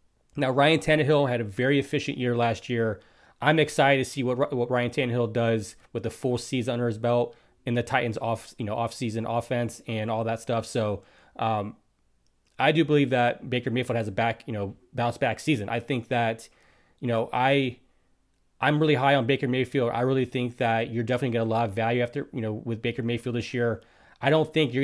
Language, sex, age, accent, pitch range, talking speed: English, male, 20-39, American, 115-130 Hz, 215 wpm